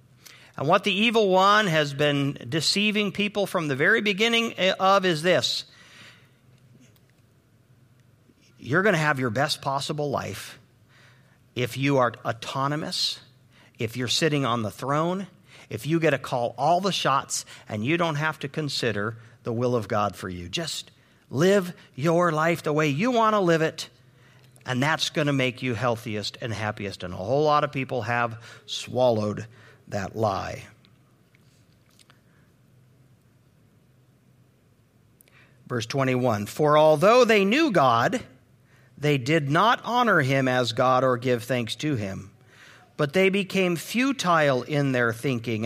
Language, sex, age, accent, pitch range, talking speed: English, male, 50-69, American, 125-165 Hz, 145 wpm